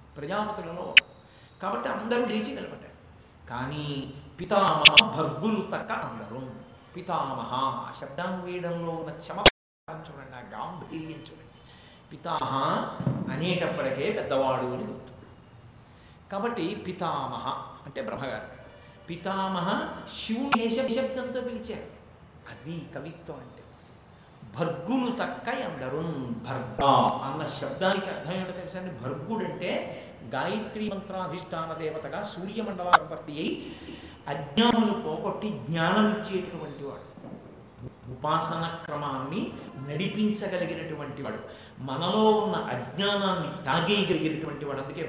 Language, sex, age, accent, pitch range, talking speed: Telugu, male, 50-69, native, 140-200 Hz, 85 wpm